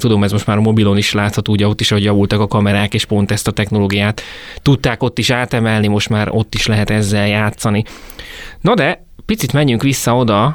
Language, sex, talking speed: Hungarian, male, 210 wpm